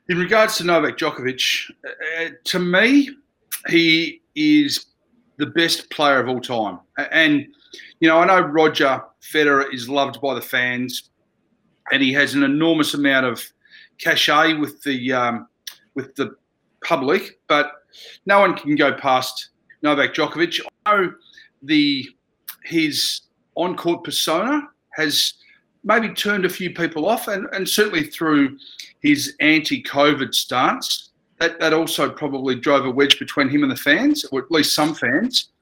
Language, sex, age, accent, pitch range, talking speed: English, male, 40-59, Australian, 140-220 Hz, 145 wpm